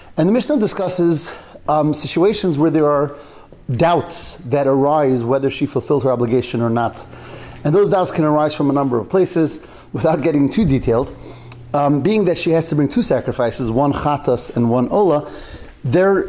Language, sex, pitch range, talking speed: English, male, 135-170 Hz, 175 wpm